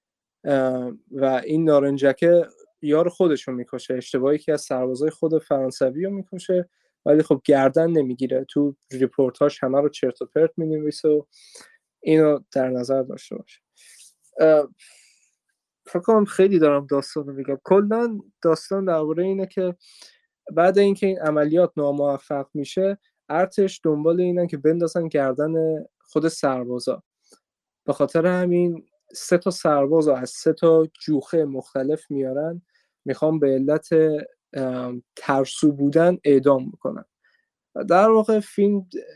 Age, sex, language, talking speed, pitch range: 20-39, male, Persian, 125 wpm, 135-175 Hz